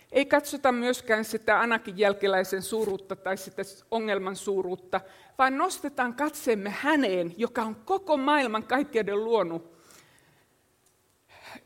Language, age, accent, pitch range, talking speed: Finnish, 50-69, native, 200-255 Hz, 110 wpm